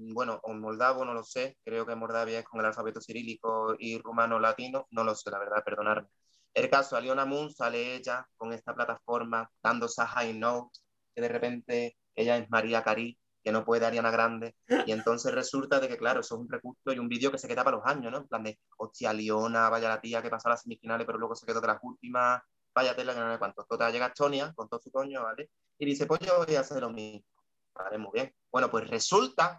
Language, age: Spanish, 30-49